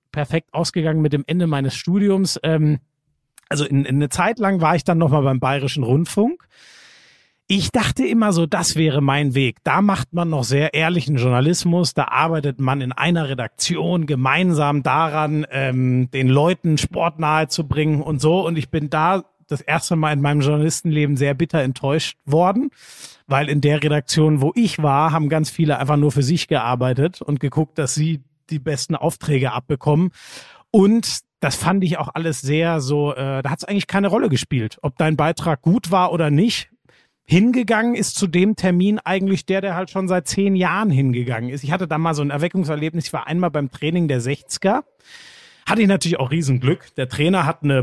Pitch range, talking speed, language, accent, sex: 145-175 Hz, 185 wpm, German, German, male